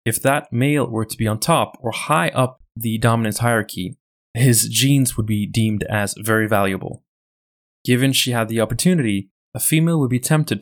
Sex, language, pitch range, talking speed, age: male, English, 110-130 Hz, 180 wpm, 20-39